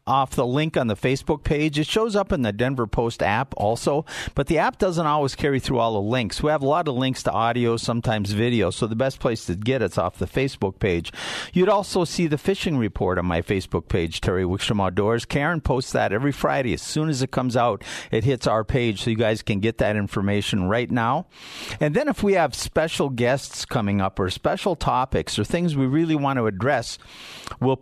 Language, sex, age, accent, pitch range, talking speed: English, male, 50-69, American, 110-145 Hz, 225 wpm